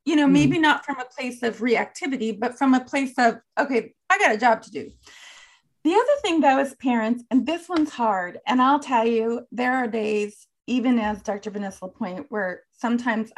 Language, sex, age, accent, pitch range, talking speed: English, female, 30-49, American, 210-280 Hz, 205 wpm